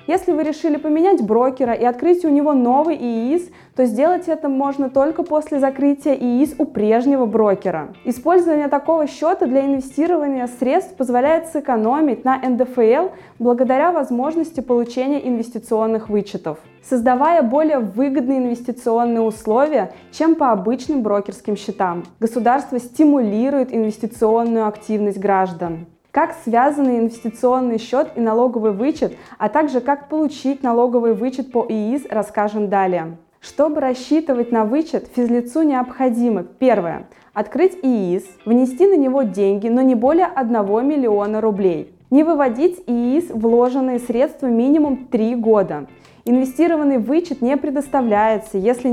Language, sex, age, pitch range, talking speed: Russian, female, 20-39, 225-285 Hz, 125 wpm